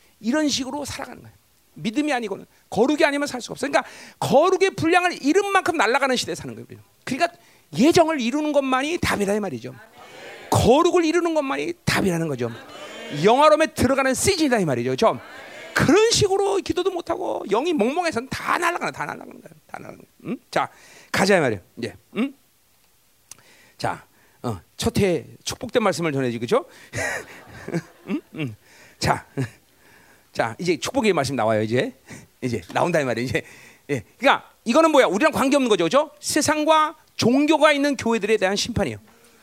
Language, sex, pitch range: Korean, male, 220-320 Hz